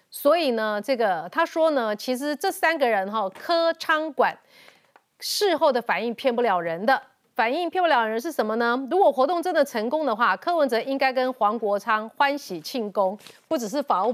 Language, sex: Chinese, female